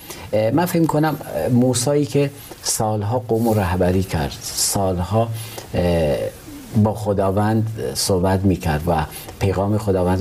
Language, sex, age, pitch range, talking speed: Persian, male, 50-69, 90-115 Hz, 105 wpm